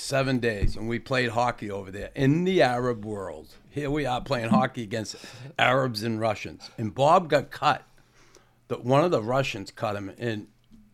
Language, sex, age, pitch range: English, male, 60-79, 115-135 Hz